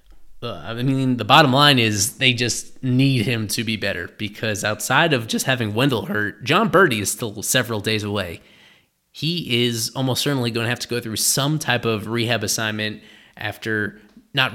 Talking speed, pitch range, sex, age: 180 wpm, 110-130 Hz, male, 20-39